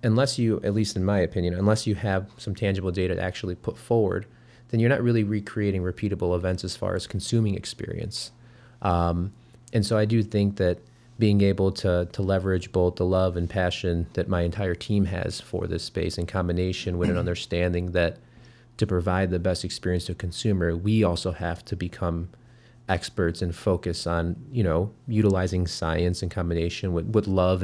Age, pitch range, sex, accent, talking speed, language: 30-49, 90-110 Hz, male, American, 185 wpm, English